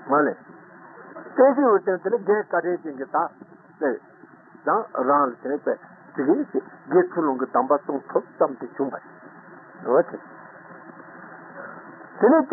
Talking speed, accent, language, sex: 90 wpm, Indian, Italian, male